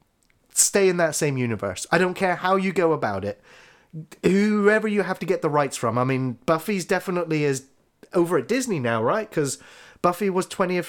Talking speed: 195 wpm